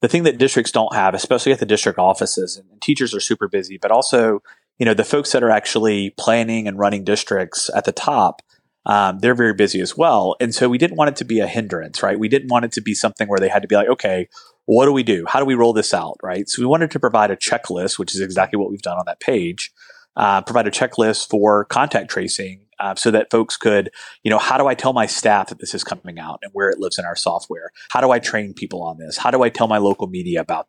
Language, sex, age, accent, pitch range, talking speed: English, male, 30-49, American, 100-125 Hz, 270 wpm